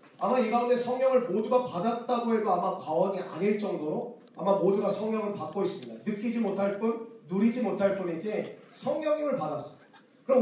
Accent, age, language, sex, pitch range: native, 40-59, Korean, male, 190-255 Hz